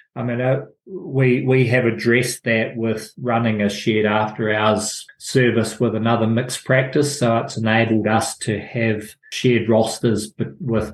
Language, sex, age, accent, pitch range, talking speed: English, male, 20-39, Australian, 105-120 Hz, 150 wpm